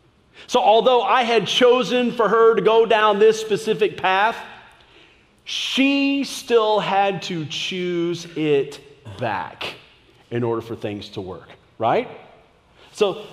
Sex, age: male, 40-59